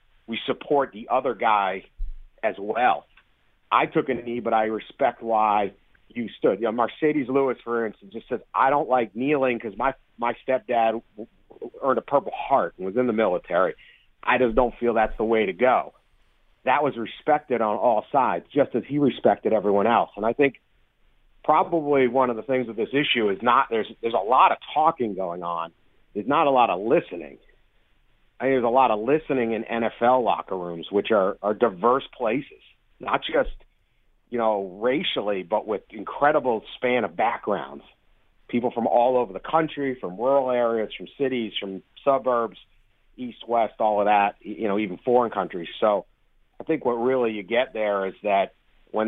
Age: 40-59